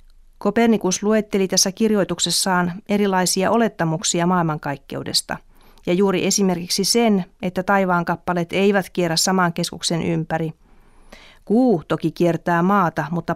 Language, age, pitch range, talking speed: Finnish, 40-59, 160-195 Hz, 105 wpm